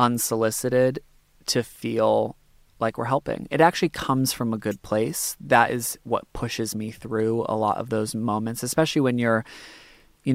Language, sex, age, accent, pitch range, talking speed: English, male, 20-39, American, 110-130 Hz, 160 wpm